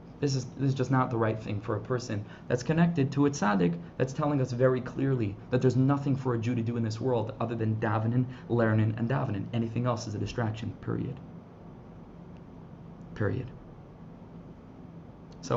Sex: male